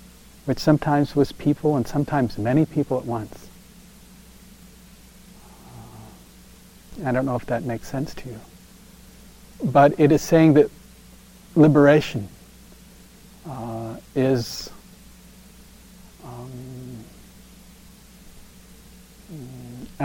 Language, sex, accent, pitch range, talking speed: English, male, American, 115-160 Hz, 85 wpm